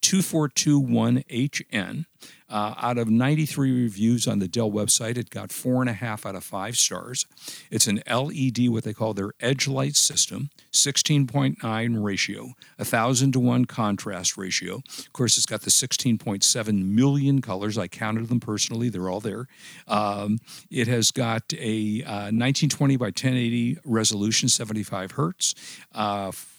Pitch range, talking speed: 105-135 Hz, 145 wpm